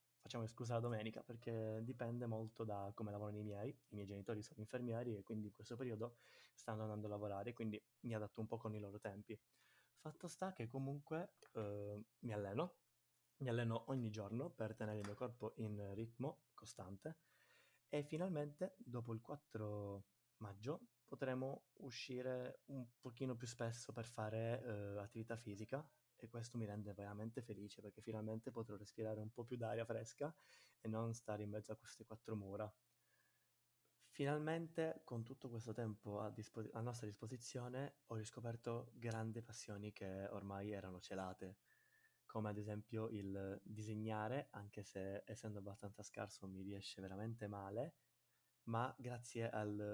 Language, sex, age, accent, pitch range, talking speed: Italian, male, 20-39, native, 105-125 Hz, 155 wpm